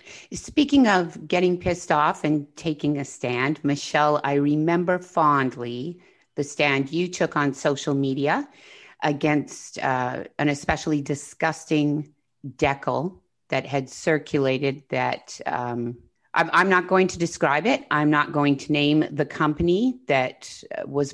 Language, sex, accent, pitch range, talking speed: English, female, American, 135-165 Hz, 135 wpm